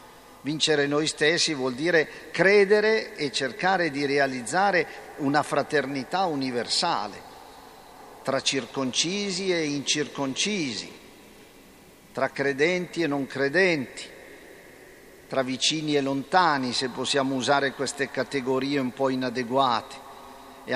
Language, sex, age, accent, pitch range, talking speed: Italian, male, 50-69, native, 130-155 Hz, 100 wpm